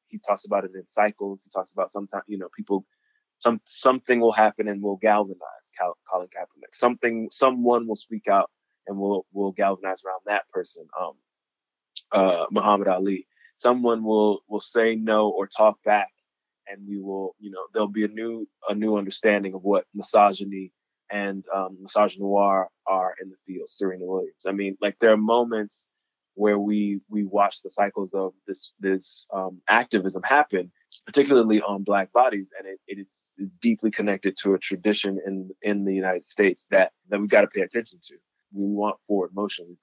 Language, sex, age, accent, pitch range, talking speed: English, male, 20-39, American, 95-105 Hz, 180 wpm